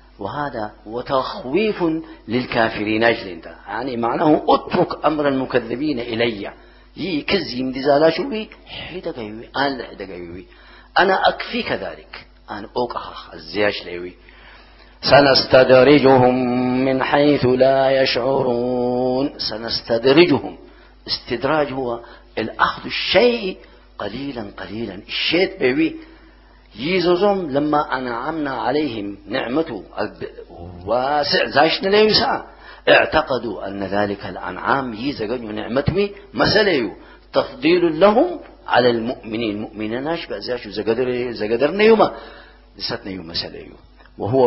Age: 50-69